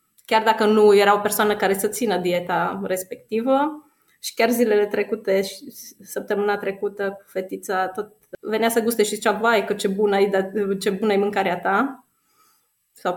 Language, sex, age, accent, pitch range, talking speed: Romanian, female, 20-39, native, 190-230 Hz, 160 wpm